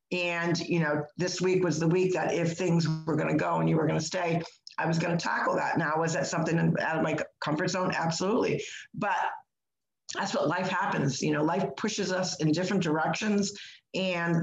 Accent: American